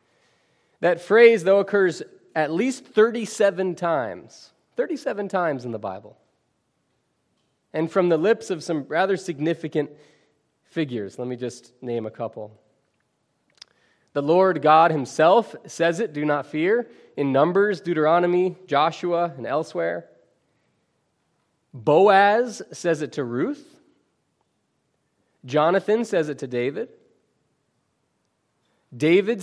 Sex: male